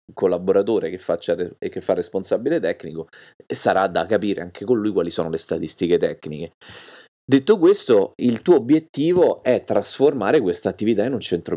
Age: 30-49